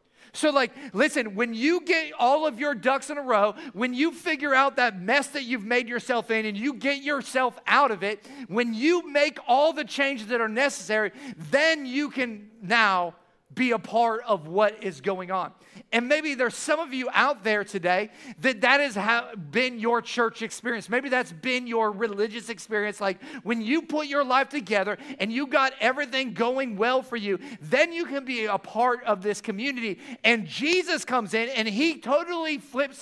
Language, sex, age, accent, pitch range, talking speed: English, male, 40-59, American, 225-285 Hz, 195 wpm